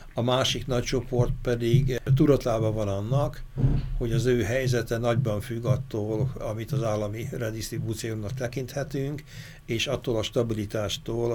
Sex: male